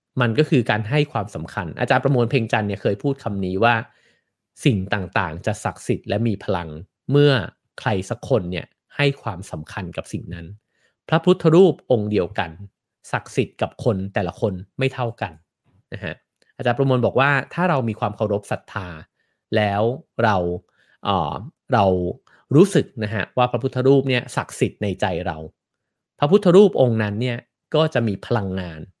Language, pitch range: English, 100-135 Hz